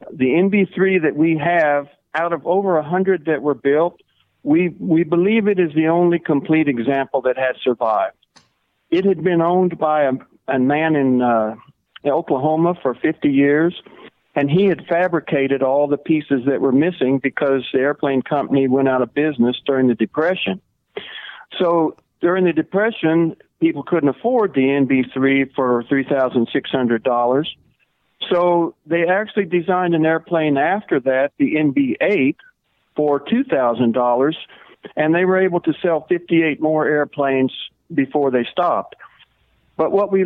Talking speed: 155 wpm